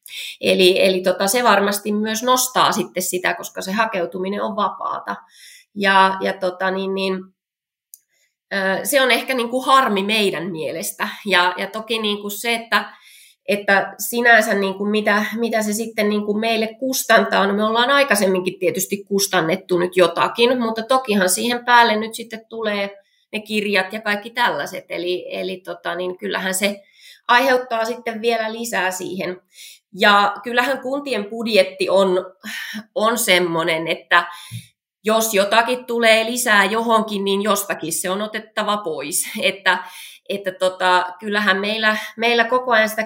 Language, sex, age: Finnish, female, 20-39